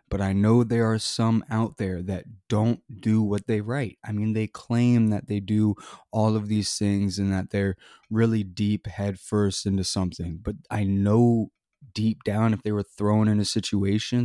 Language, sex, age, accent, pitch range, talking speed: English, male, 20-39, American, 95-110 Hz, 195 wpm